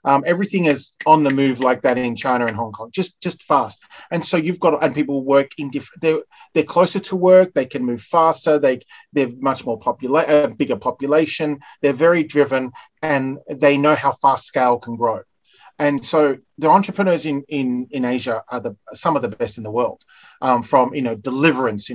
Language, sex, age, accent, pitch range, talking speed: English, male, 30-49, Australian, 125-160 Hz, 205 wpm